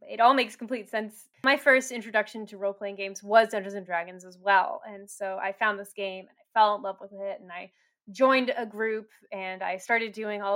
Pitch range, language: 195-230 Hz, English